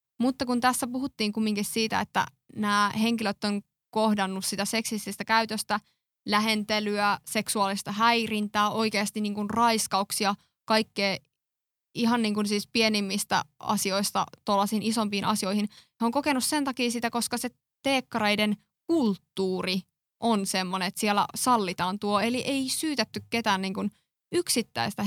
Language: Finnish